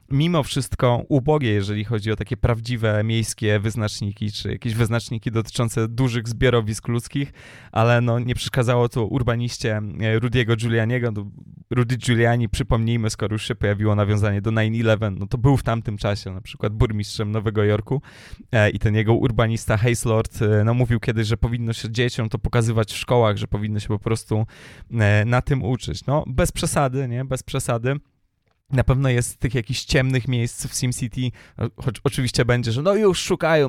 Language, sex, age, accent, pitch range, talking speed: Polish, male, 20-39, native, 110-130 Hz, 165 wpm